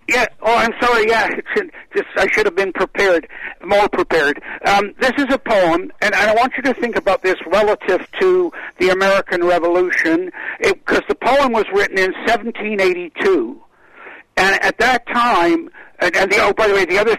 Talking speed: 180 wpm